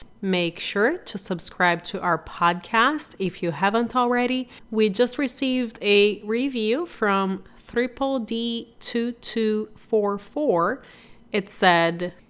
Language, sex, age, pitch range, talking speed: English, female, 30-49, 175-215 Hz, 105 wpm